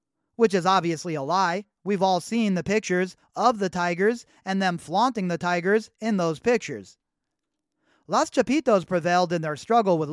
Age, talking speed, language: 30-49, 165 wpm, English